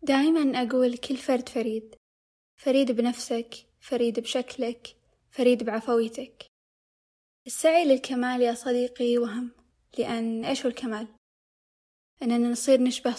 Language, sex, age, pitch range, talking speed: Arabic, female, 20-39, 230-260 Hz, 105 wpm